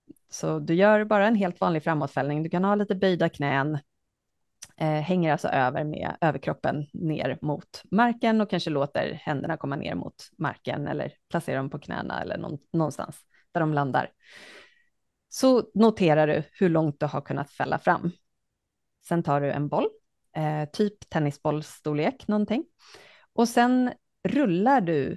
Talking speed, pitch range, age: 150 wpm, 150-200 Hz, 30-49